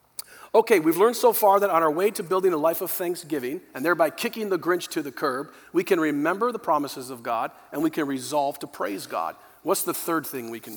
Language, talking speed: English, 240 wpm